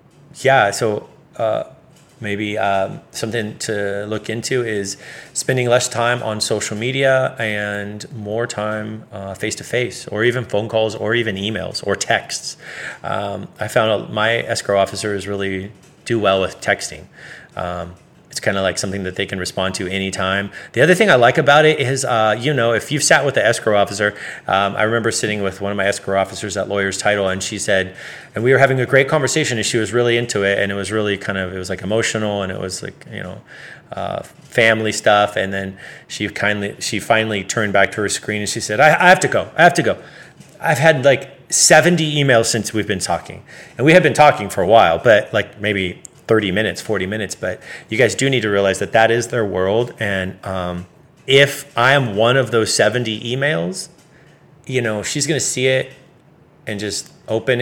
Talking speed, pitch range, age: 205 wpm, 100-125 Hz, 30-49